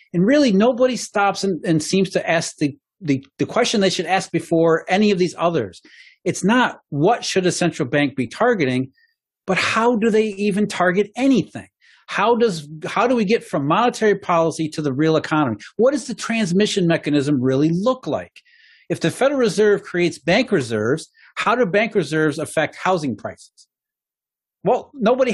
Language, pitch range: English, 150-220 Hz